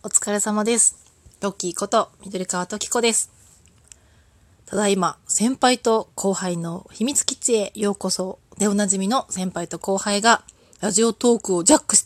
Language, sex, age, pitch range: Japanese, female, 20-39, 185-225 Hz